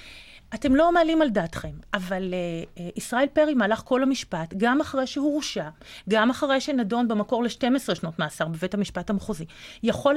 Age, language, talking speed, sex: 40-59, Hebrew, 160 wpm, female